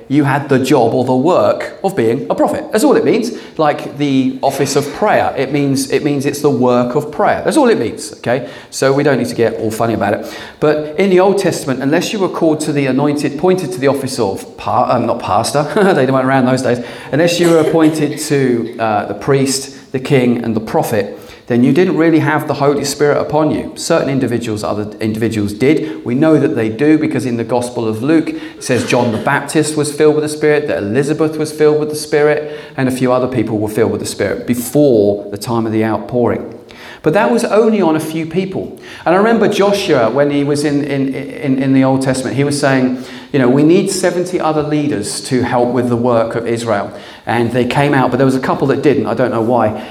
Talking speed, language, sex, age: 235 wpm, English, male, 40-59